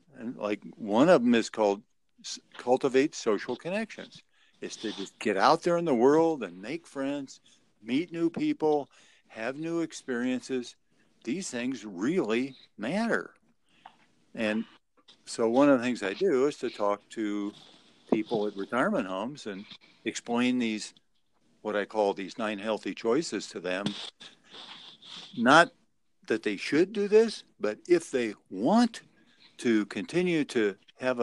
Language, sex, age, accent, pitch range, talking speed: English, male, 60-79, American, 110-185 Hz, 140 wpm